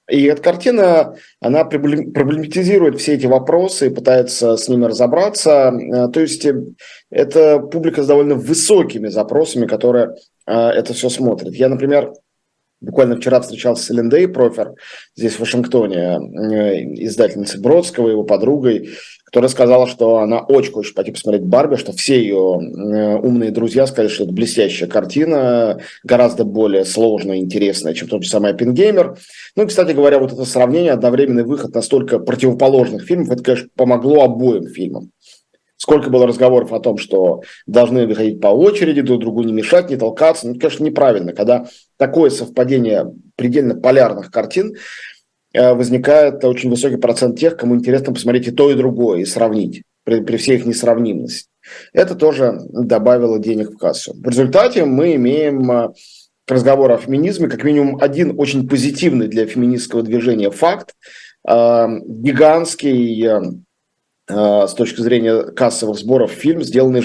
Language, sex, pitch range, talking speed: Russian, male, 115-145 Hz, 145 wpm